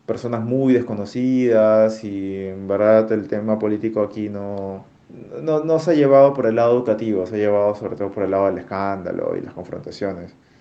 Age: 30-49